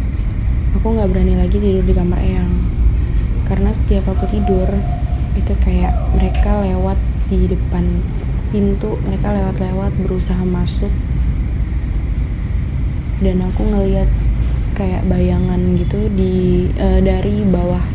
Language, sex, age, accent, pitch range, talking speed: Indonesian, female, 20-39, native, 85-105 Hz, 110 wpm